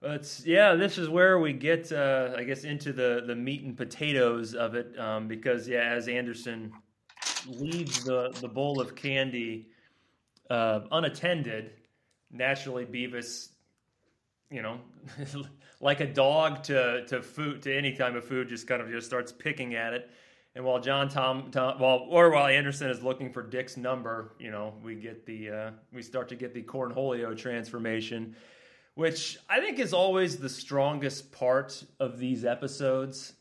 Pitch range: 120-140 Hz